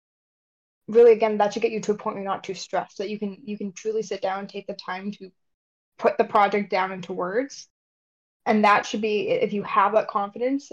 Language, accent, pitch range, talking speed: English, American, 200-240 Hz, 235 wpm